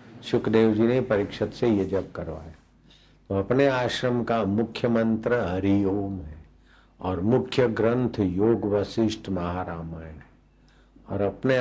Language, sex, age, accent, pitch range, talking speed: Hindi, male, 50-69, native, 95-120 Hz, 130 wpm